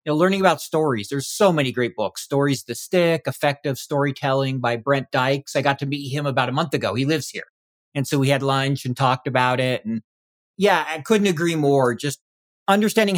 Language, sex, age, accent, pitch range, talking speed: English, male, 40-59, American, 135-180 Hz, 215 wpm